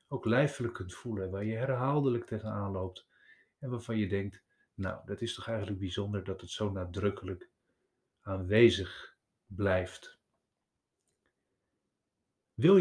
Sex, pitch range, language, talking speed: male, 100-125 Hz, Dutch, 120 wpm